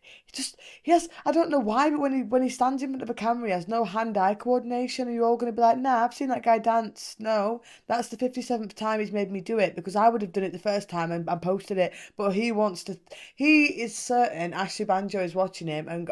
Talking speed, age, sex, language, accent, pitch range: 265 wpm, 20-39, female, English, British, 175-245 Hz